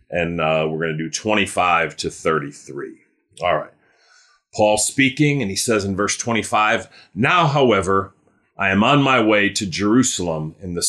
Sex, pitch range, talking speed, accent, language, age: male, 95-130 Hz, 165 wpm, American, English, 40-59